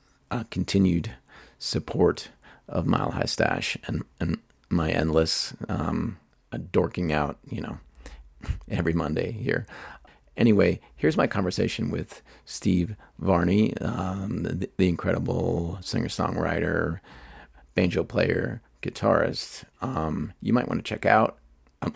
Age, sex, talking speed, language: 30-49, male, 120 wpm, English